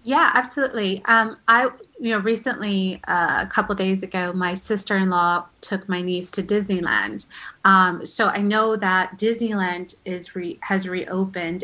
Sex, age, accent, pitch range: female, 30-49, American, 180-205 Hz